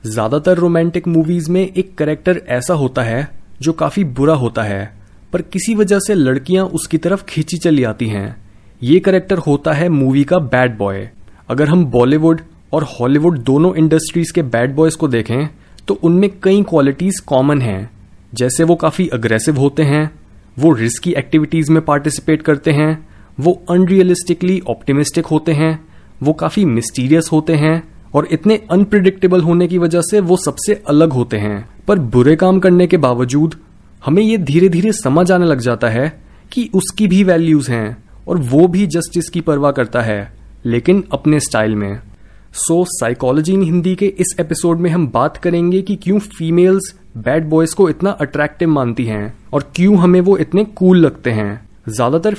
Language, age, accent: Hindi, 30-49, native